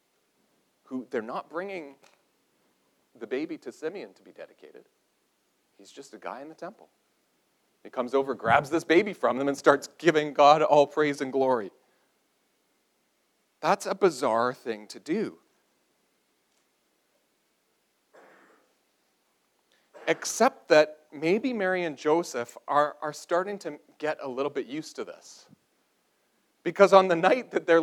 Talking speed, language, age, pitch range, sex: 135 wpm, English, 40-59, 130-175 Hz, male